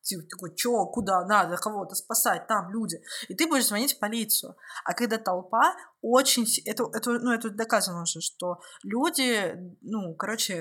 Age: 20-39